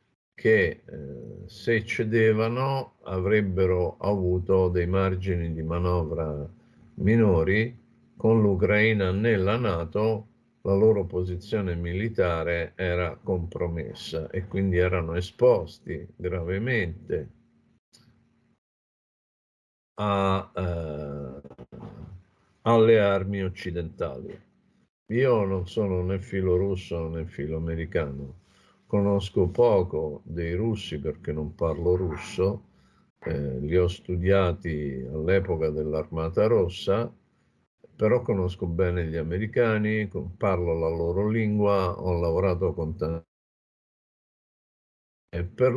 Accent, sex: native, male